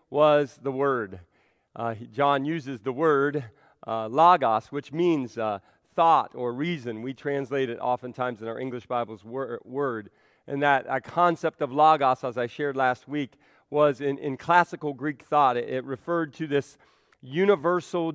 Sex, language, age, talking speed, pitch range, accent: male, English, 40-59, 165 wpm, 130-160 Hz, American